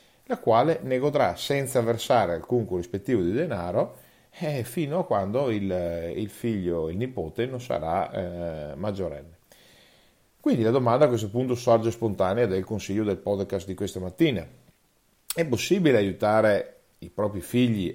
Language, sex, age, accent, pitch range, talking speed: Italian, male, 40-59, native, 90-120 Hz, 145 wpm